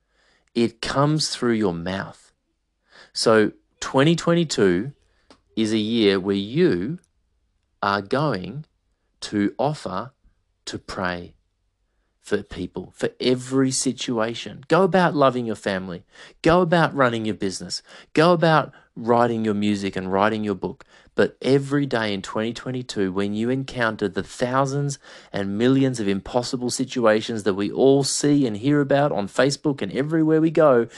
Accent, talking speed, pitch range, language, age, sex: Australian, 135 wpm, 100-135 Hz, English, 30-49, male